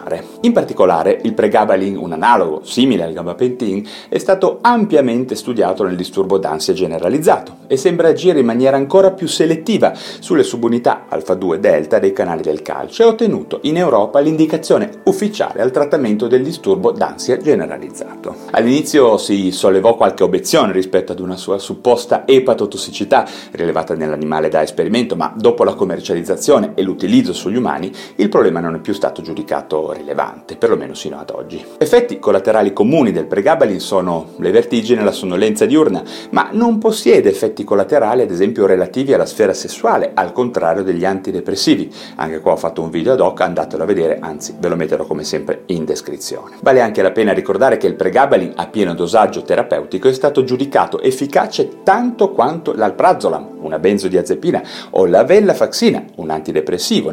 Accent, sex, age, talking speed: native, male, 30-49, 165 wpm